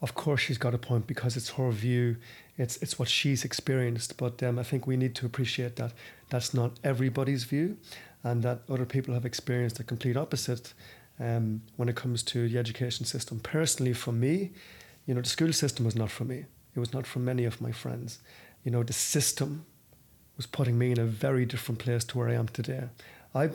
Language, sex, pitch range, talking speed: English, male, 120-135 Hz, 210 wpm